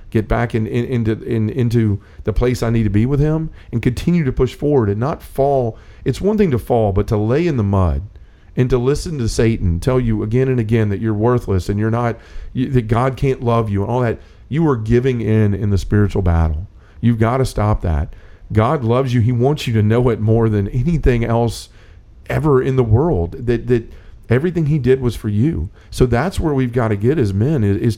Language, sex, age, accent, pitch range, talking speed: English, male, 40-59, American, 105-130 Hz, 230 wpm